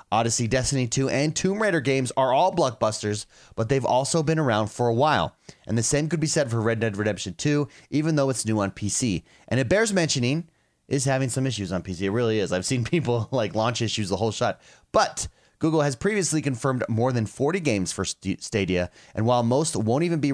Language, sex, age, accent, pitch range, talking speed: English, male, 30-49, American, 110-155 Hz, 220 wpm